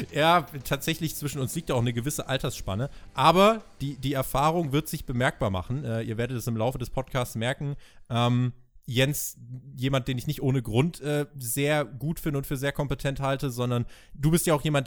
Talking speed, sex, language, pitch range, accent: 200 wpm, male, German, 115-150 Hz, German